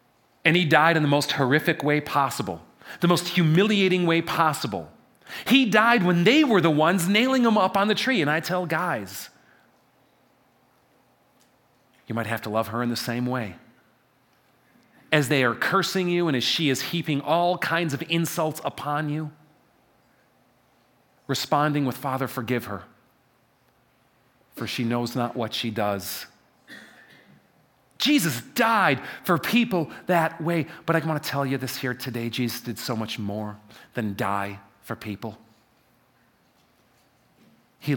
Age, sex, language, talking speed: 40-59, male, English, 150 wpm